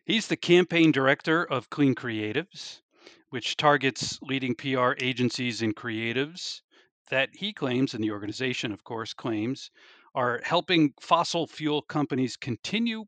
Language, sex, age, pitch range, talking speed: English, male, 40-59, 115-150 Hz, 135 wpm